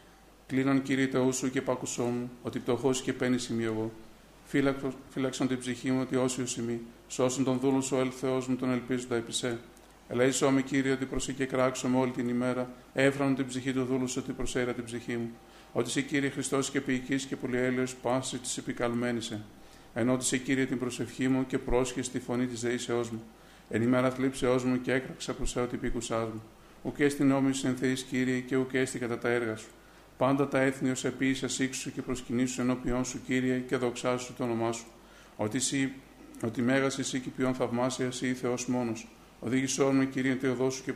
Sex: male